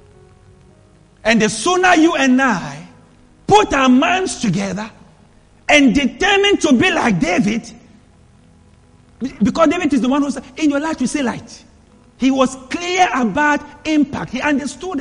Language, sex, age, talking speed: English, male, 50-69, 145 wpm